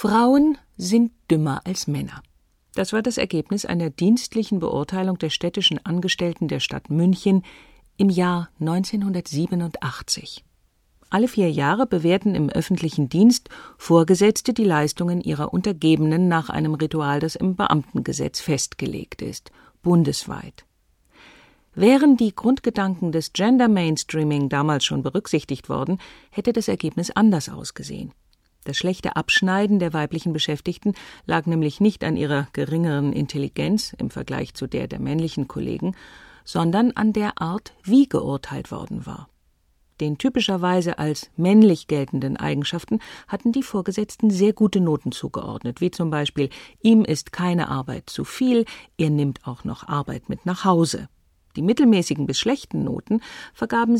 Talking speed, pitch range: 135 wpm, 150-215 Hz